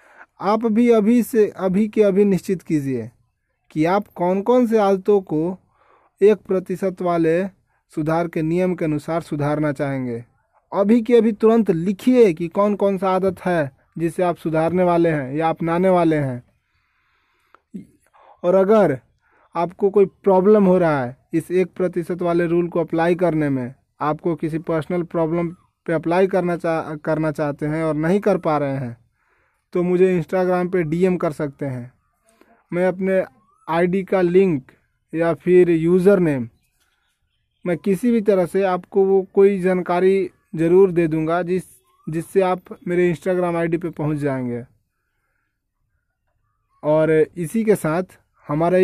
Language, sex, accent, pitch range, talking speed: English, male, Indian, 150-190 Hz, 125 wpm